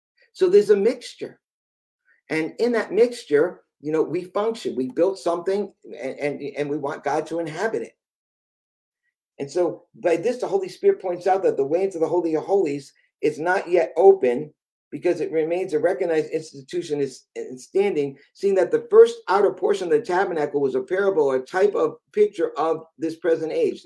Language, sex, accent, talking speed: English, male, American, 185 wpm